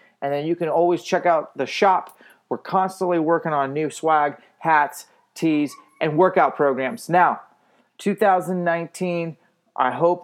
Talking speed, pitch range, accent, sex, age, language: 140 wpm, 145-180 Hz, American, male, 30-49, English